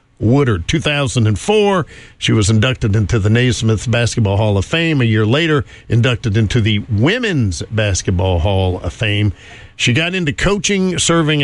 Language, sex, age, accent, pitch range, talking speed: English, male, 50-69, American, 105-150 Hz, 145 wpm